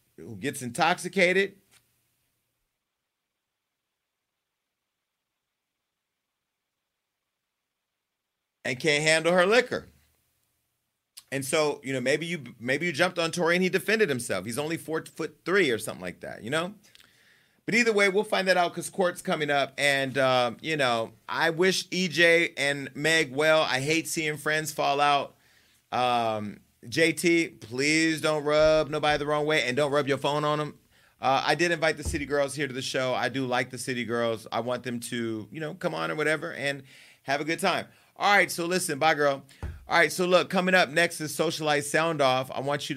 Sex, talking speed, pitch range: male, 180 wpm, 130-160 Hz